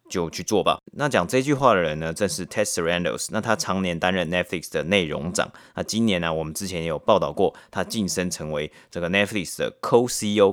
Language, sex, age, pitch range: Chinese, male, 30-49, 90-120 Hz